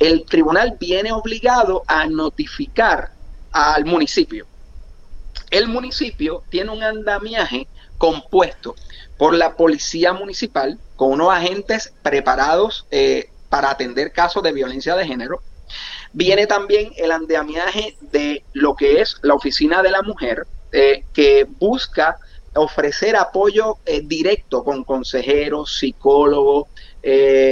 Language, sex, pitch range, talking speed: Spanish, male, 150-225 Hz, 120 wpm